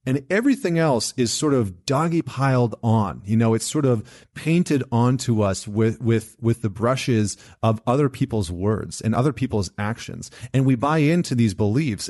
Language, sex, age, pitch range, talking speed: English, male, 30-49, 110-135 Hz, 180 wpm